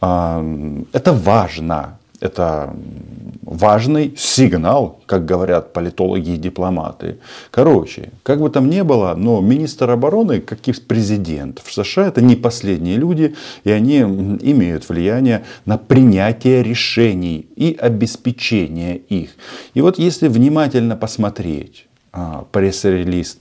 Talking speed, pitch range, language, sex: 115 wpm, 85-120 Hz, Russian, male